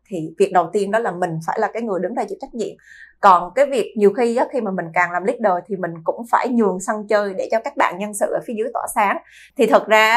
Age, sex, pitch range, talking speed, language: 20-39, female, 185-240 Hz, 290 wpm, Vietnamese